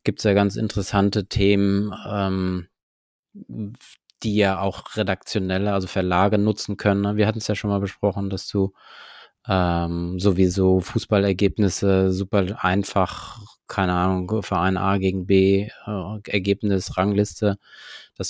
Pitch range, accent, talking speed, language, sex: 95-105 Hz, German, 130 wpm, German, male